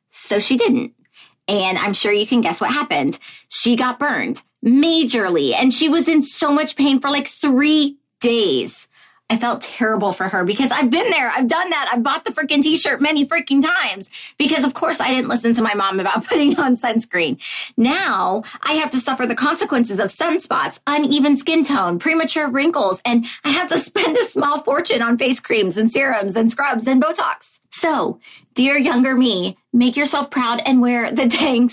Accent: American